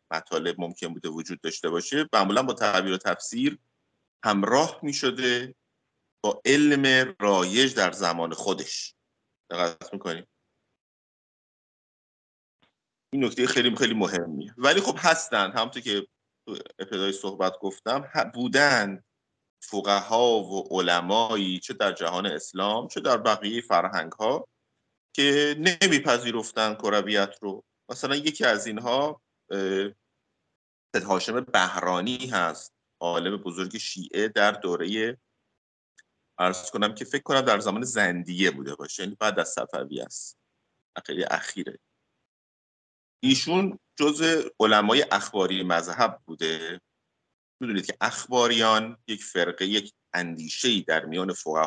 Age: 50-69